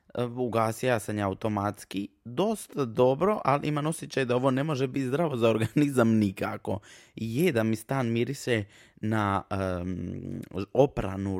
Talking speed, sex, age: 125 wpm, male, 20-39